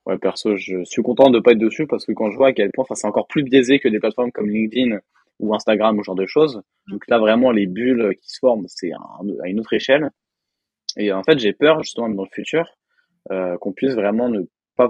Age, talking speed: 20-39, 255 wpm